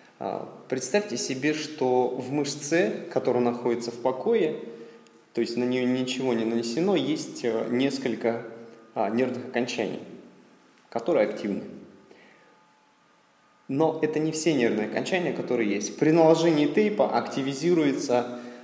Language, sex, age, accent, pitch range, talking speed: Russian, male, 20-39, native, 115-140 Hz, 110 wpm